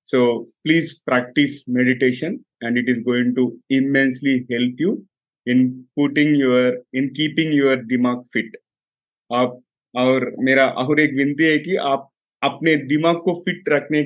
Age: 30-49